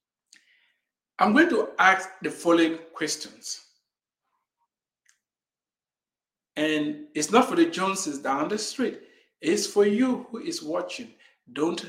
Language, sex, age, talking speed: English, male, 60-79, 115 wpm